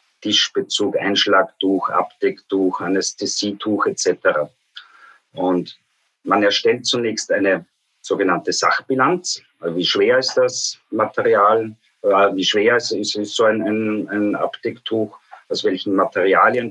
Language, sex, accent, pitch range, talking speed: German, male, German, 110-155 Hz, 110 wpm